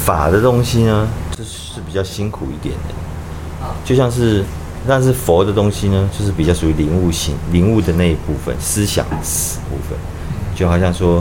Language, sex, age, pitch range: Chinese, male, 30-49, 80-90 Hz